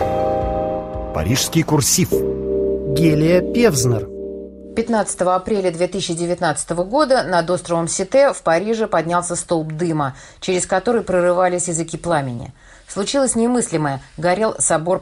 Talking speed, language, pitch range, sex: 100 wpm, Russian, 155-215 Hz, female